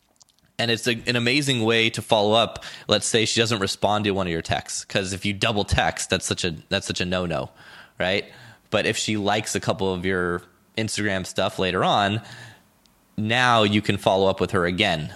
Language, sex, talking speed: English, male, 205 wpm